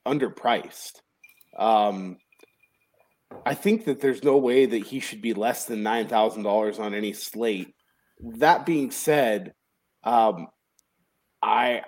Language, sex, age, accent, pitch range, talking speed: English, male, 20-39, American, 110-145 Hz, 115 wpm